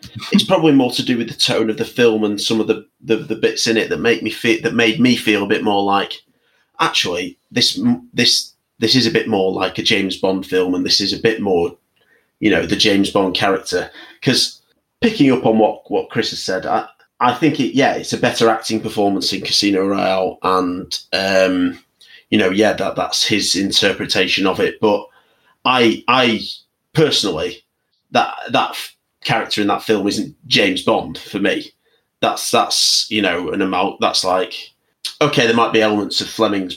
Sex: male